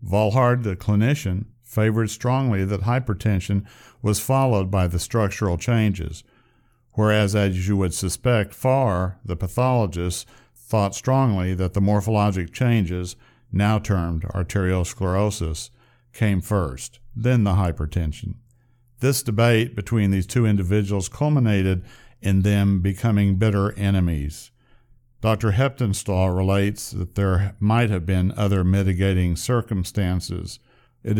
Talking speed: 115 wpm